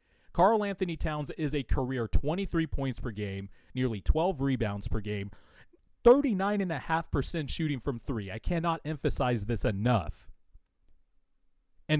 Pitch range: 100-145 Hz